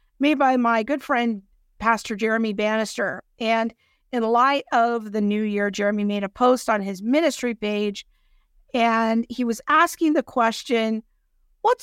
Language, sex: English, female